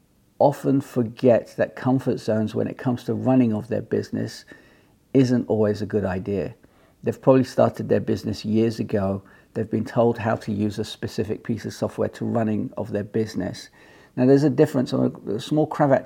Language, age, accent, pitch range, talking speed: English, 50-69, British, 105-125 Hz, 180 wpm